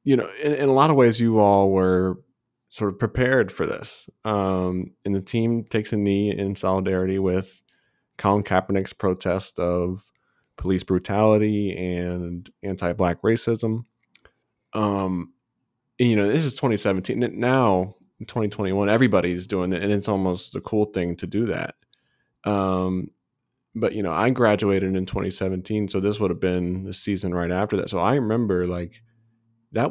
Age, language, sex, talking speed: 20-39, English, male, 160 wpm